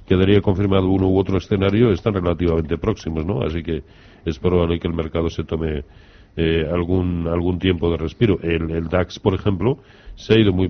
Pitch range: 85-100 Hz